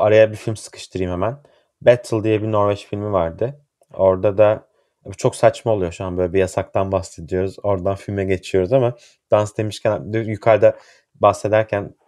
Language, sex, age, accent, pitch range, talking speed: Turkish, male, 30-49, native, 95-110 Hz, 150 wpm